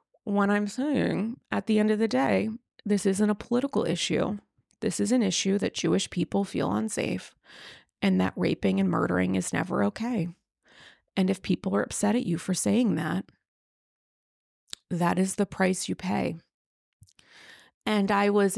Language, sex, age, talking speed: English, female, 30-49, 160 wpm